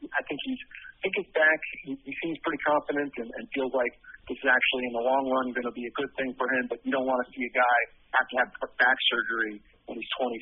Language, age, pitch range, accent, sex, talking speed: English, 40-59, 120-145 Hz, American, male, 260 wpm